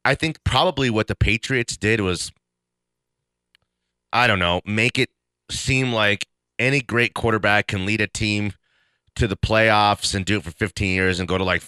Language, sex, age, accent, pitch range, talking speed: English, male, 30-49, American, 85-115 Hz, 180 wpm